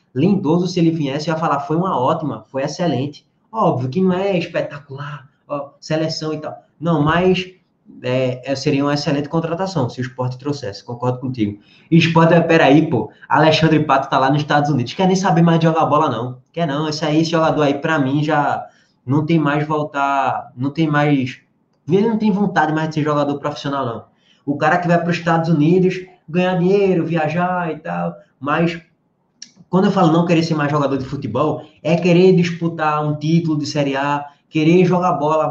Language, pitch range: Portuguese, 140-180 Hz